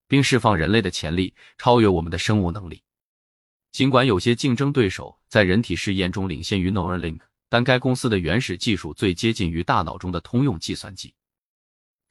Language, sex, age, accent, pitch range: Chinese, male, 20-39, native, 90-120 Hz